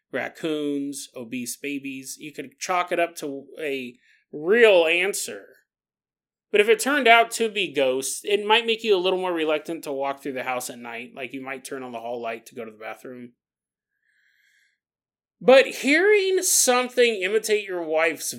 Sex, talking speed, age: male, 175 wpm, 30-49